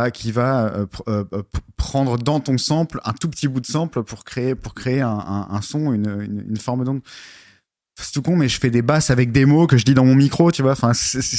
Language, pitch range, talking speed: French, 115-145 Hz, 255 wpm